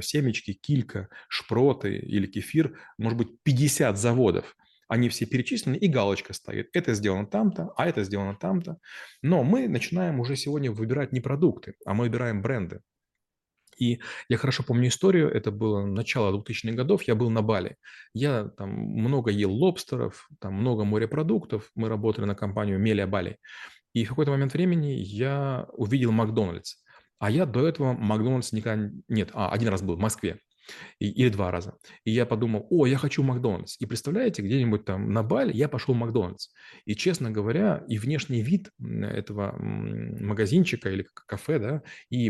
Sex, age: male, 20-39